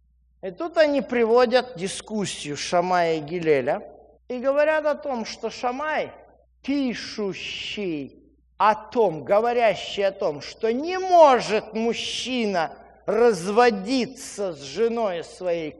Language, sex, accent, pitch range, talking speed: Russian, male, native, 190-255 Hz, 105 wpm